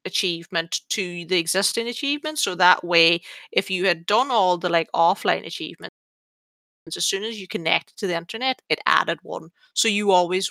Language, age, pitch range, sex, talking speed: English, 30-49, 170-210 Hz, female, 175 wpm